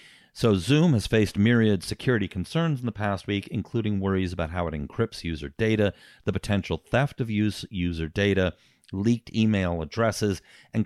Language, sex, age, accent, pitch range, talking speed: English, male, 40-59, American, 85-110 Hz, 160 wpm